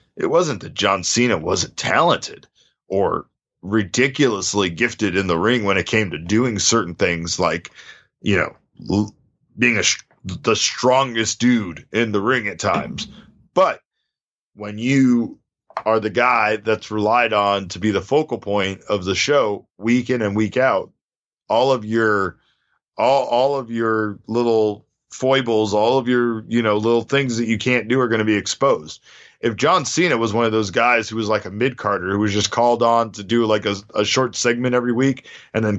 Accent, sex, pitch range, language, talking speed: American, male, 105-130 Hz, English, 185 wpm